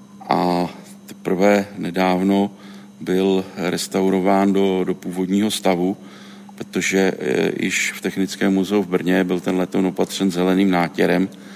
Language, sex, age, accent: Czech, male, 40-59, native